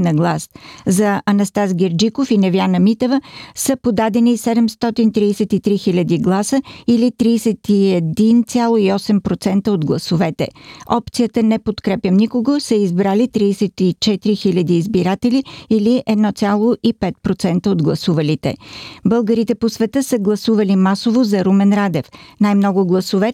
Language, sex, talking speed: Bulgarian, female, 105 wpm